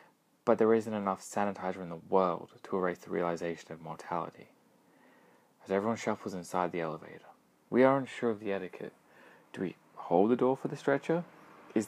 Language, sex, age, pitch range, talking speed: English, male, 20-39, 90-115 Hz, 175 wpm